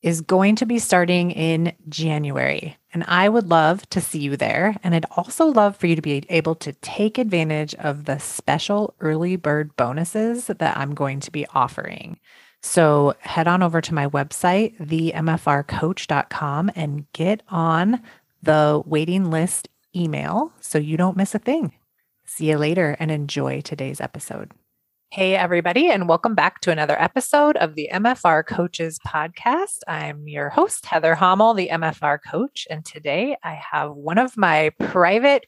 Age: 30-49